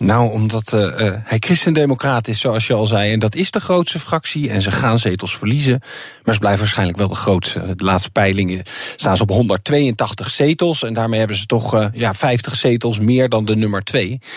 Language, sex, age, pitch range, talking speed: Dutch, male, 40-59, 115-150 Hz, 215 wpm